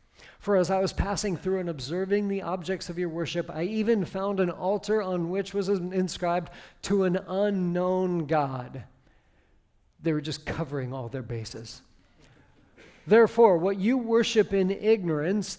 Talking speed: 150 wpm